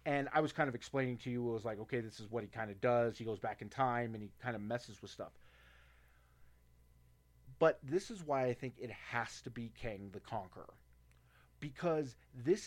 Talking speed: 220 wpm